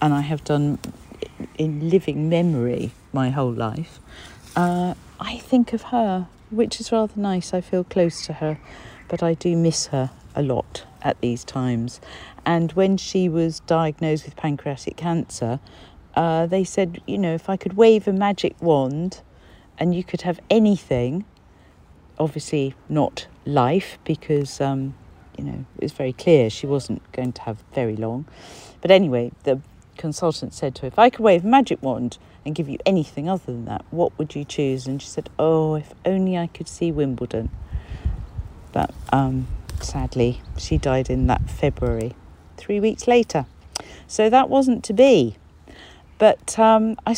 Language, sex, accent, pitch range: English, female, British, 125-180 Hz